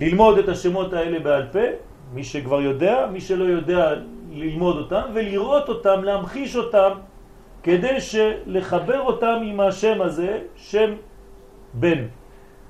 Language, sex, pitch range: French, male, 140-210 Hz